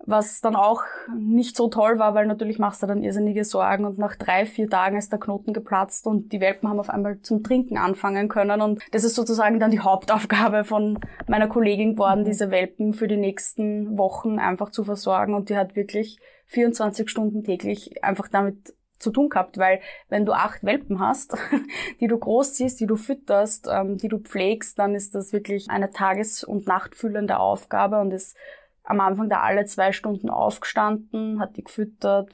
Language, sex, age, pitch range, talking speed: German, female, 20-39, 205-230 Hz, 190 wpm